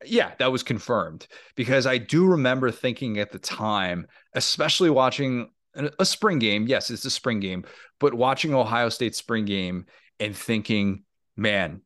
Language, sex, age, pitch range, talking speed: English, male, 30-49, 105-130 Hz, 155 wpm